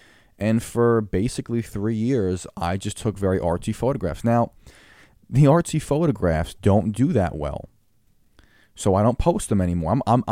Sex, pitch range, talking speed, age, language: male, 95-120 Hz, 155 wpm, 20-39, English